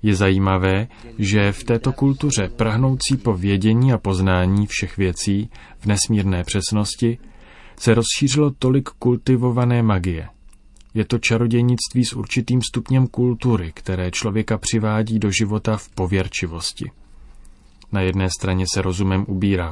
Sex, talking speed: male, 120 wpm